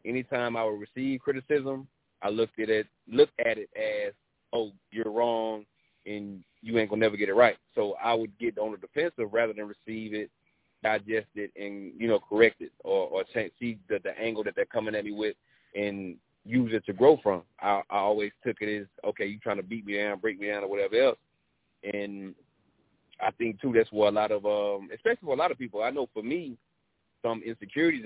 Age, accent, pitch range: 30-49, American, 105-130 Hz